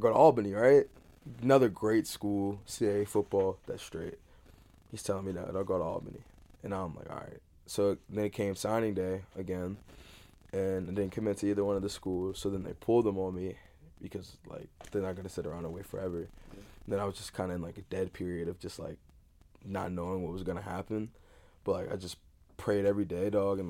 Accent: American